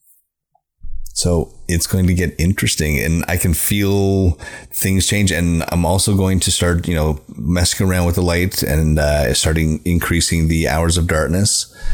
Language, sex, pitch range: English, male, 75-90 Hz